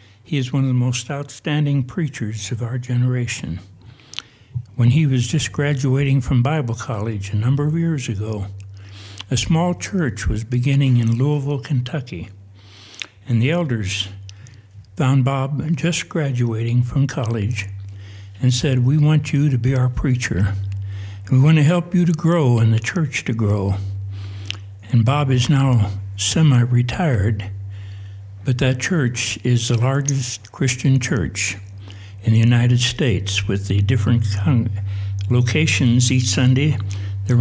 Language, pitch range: English, 100-135 Hz